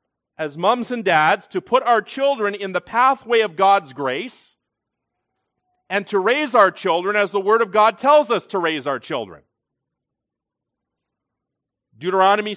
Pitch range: 165-215 Hz